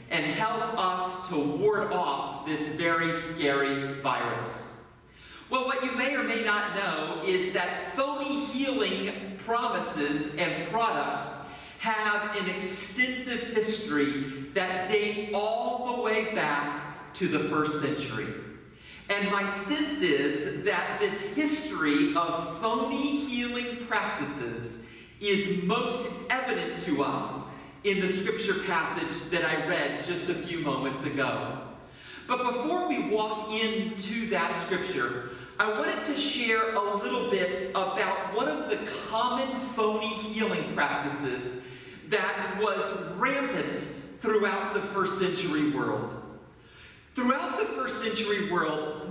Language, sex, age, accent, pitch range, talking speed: English, male, 40-59, American, 155-225 Hz, 125 wpm